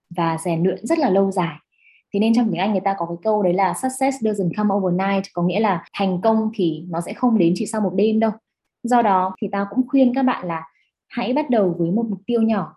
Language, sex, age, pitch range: Vietnamese, female, 20-39, 175-245 Hz